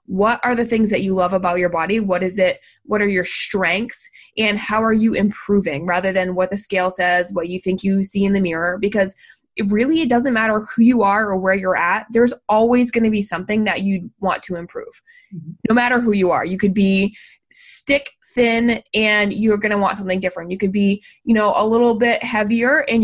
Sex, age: female, 20-39